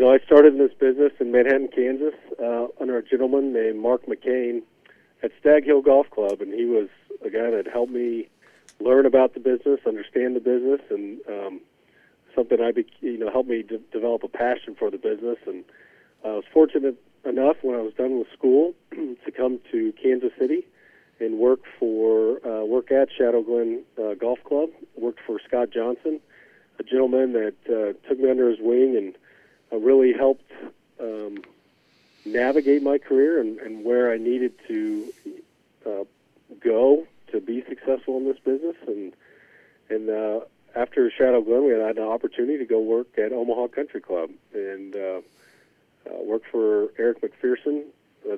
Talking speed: 170 wpm